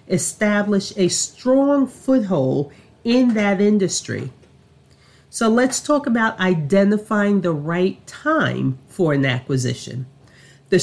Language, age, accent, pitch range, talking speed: English, 40-59, American, 170-235 Hz, 105 wpm